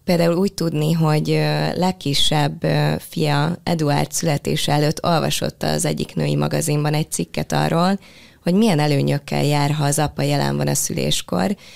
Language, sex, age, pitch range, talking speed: Hungarian, female, 20-39, 135-180 Hz, 145 wpm